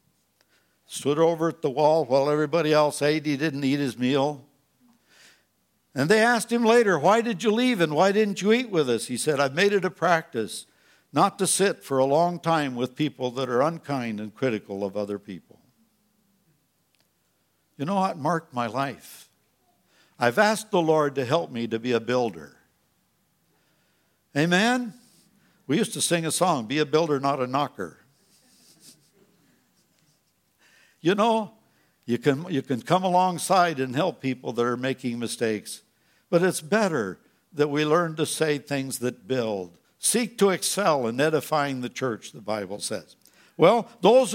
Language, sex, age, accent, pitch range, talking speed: English, male, 60-79, American, 140-195 Hz, 165 wpm